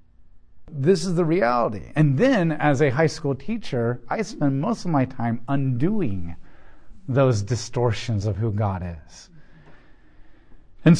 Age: 50-69